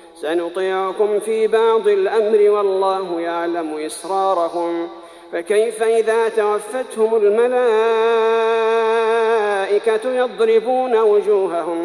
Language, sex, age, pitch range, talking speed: Arabic, male, 40-59, 190-225 Hz, 65 wpm